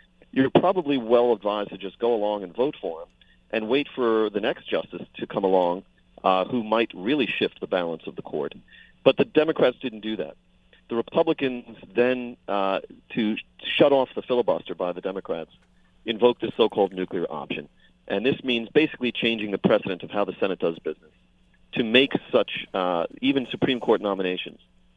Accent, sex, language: American, male, English